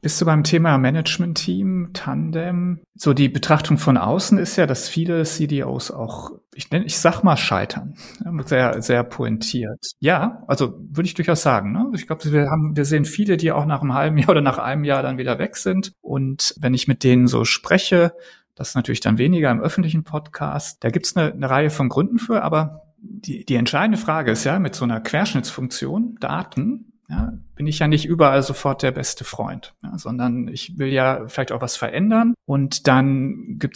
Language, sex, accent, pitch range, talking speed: German, male, German, 125-170 Hz, 200 wpm